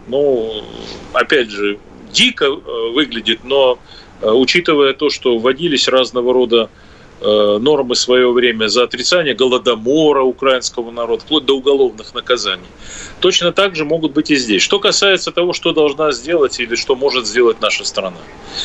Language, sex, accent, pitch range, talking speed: Russian, male, native, 120-180 Hz, 140 wpm